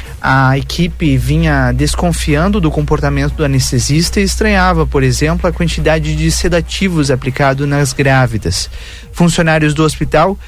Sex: male